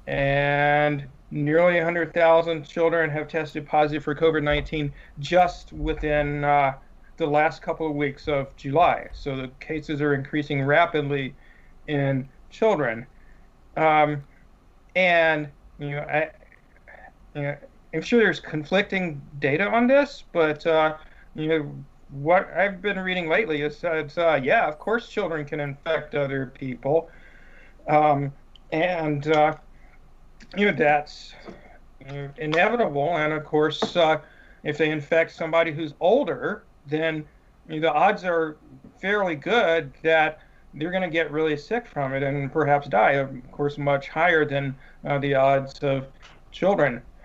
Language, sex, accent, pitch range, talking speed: English, male, American, 145-170 Hz, 130 wpm